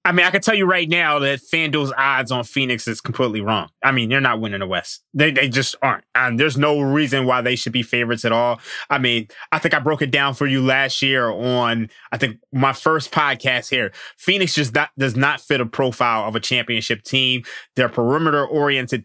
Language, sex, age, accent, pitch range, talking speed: English, male, 20-39, American, 120-150 Hz, 225 wpm